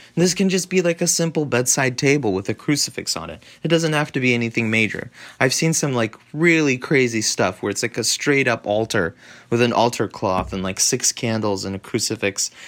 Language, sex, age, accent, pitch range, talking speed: English, male, 30-49, American, 110-140 Hz, 220 wpm